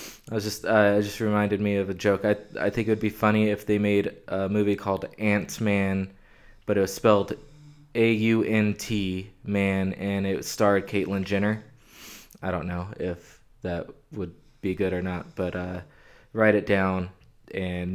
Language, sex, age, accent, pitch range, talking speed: English, male, 20-39, American, 95-110 Hz, 160 wpm